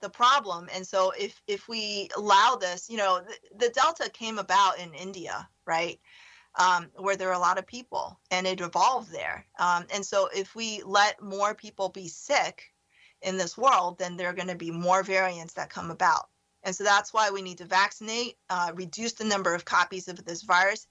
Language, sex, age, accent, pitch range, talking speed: English, female, 30-49, American, 185-220 Hz, 205 wpm